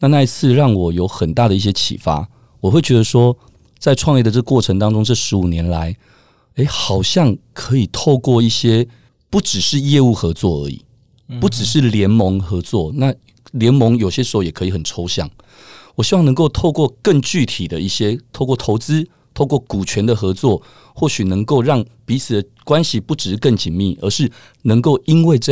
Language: Chinese